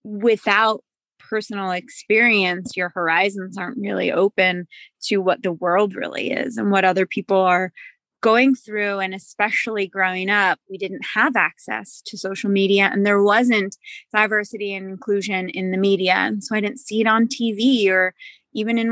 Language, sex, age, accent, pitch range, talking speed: English, female, 20-39, American, 195-250 Hz, 165 wpm